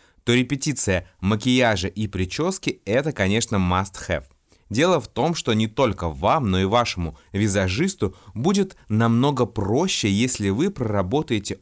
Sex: male